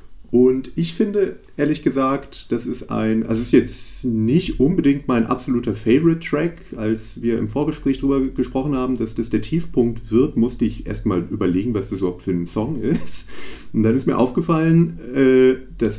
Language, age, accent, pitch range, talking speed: German, 30-49, German, 100-130 Hz, 175 wpm